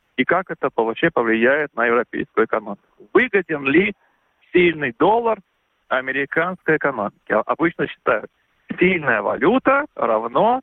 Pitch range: 130-190 Hz